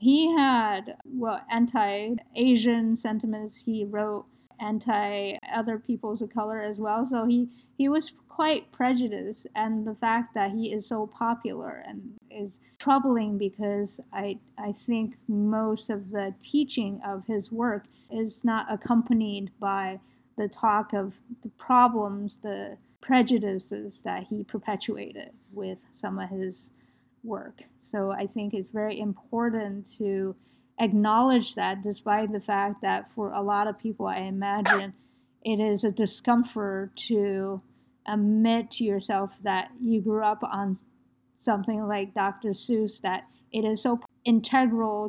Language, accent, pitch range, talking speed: English, American, 200-230 Hz, 135 wpm